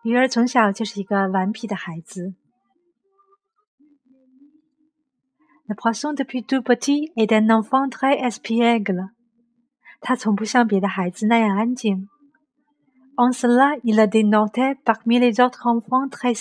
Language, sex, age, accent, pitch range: Chinese, female, 50-69, native, 220-265 Hz